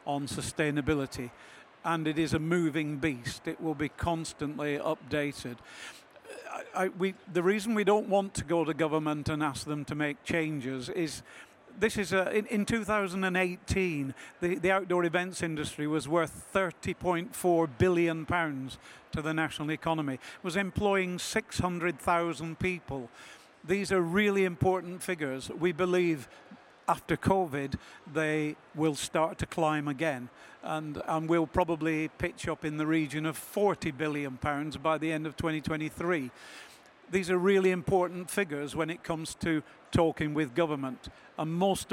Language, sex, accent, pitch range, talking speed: English, male, British, 150-180 Hz, 140 wpm